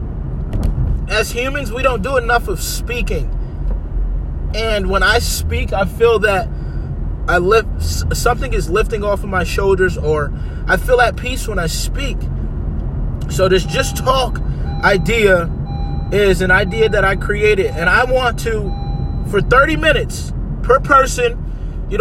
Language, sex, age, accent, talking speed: English, male, 20-39, American, 145 wpm